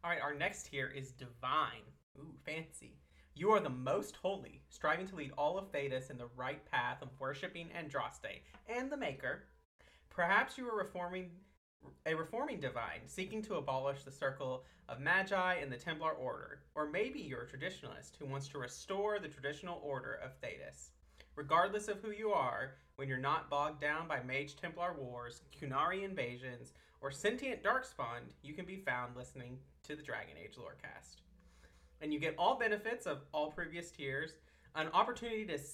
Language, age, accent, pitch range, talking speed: English, 30-49, American, 120-170 Hz, 170 wpm